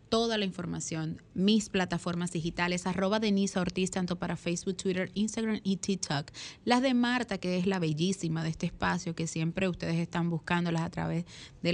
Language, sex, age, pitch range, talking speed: Spanish, female, 30-49, 170-190 Hz, 175 wpm